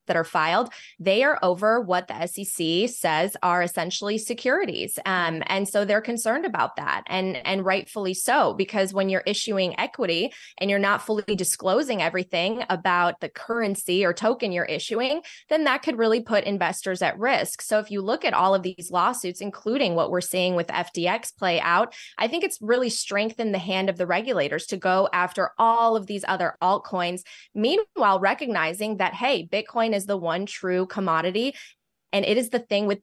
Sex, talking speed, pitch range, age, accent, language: female, 185 wpm, 185-230 Hz, 20-39, American, English